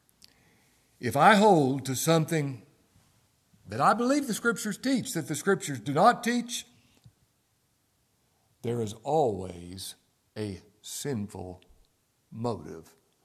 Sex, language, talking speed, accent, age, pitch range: male, English, 105 wpm, American, 60-79, 105-140 Hz